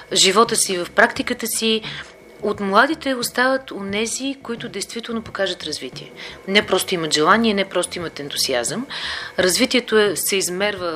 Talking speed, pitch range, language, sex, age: 135 wpm, 175-225 Hz, Bulgarian, female, 40-59